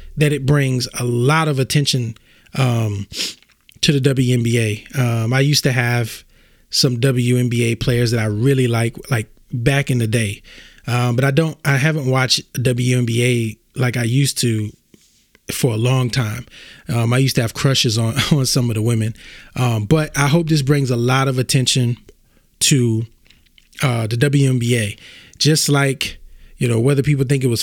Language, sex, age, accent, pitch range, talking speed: English, male, 20-39, American, 120-145 Hz, 170 wpm